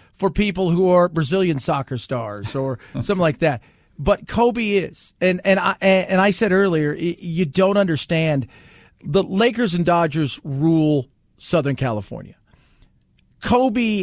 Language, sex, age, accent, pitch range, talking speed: English, male, 40-59, American, 150-195 Hz, 135 wpm